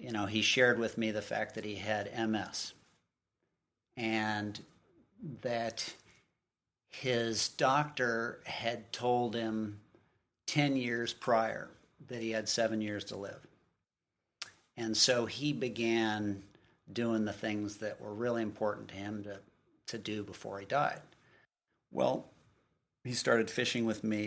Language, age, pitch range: English, 50-69, 105-115 Hz